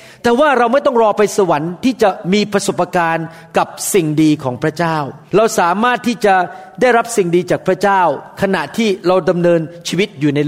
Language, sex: Thai, male